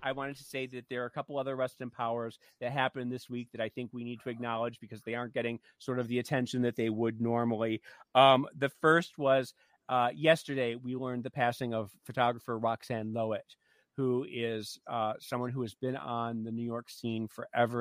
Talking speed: 210 wpm